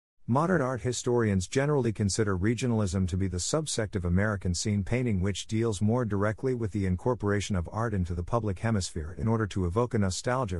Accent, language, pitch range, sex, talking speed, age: American, English, 90-115 Hz, male, 185 wpm, 50-69